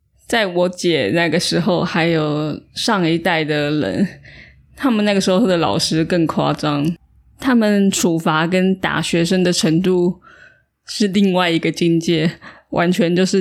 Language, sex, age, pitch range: Chinese, female, 20-39, 165-190 Hz